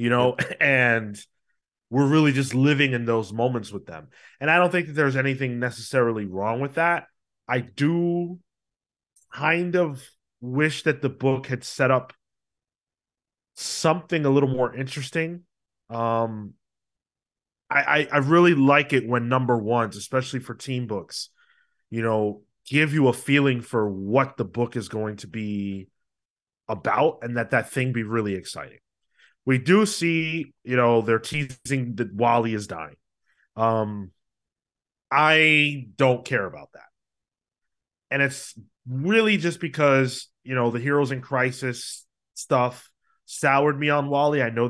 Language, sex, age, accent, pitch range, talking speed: English, male, 30-49, American, 120-150 Hz, 150 wpm